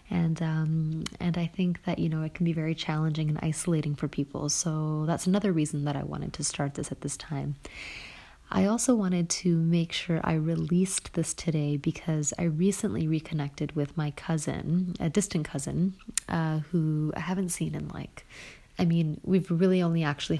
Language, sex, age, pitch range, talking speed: English, female, 30-49, 150-170 Hz, 185 wpm